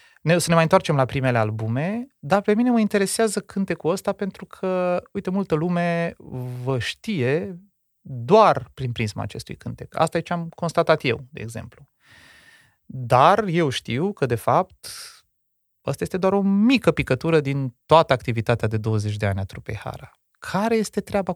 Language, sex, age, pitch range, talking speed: Romanian, male, 30-49, 115-185 Hz, 170 wpm